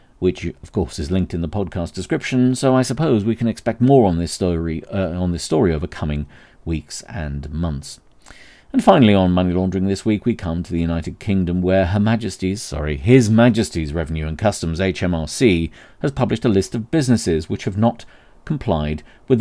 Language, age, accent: English, 40-59, British